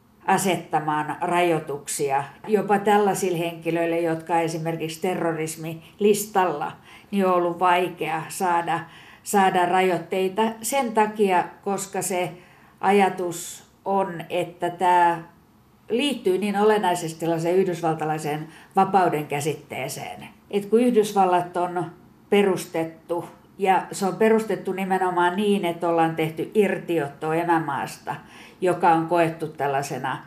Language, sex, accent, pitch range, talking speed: Finnish, female, native, 165-195 Hz, 95 wpm